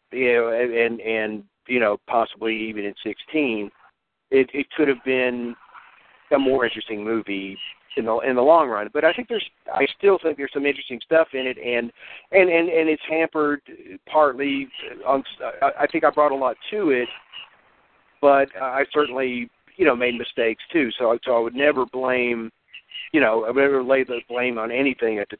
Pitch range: 115-140 Hz